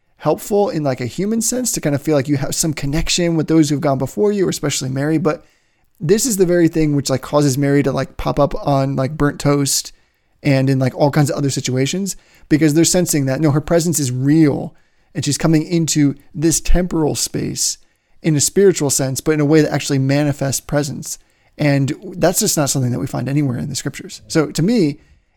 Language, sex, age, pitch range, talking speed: English, male, 20-39, 140-165 Hz, 220 wpm